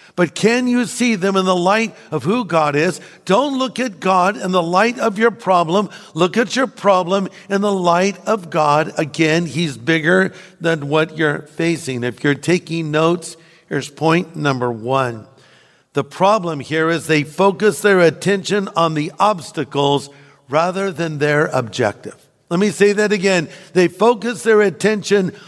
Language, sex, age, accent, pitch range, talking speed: English, male, 60-79, American, 150-195 Hz, 165 wpm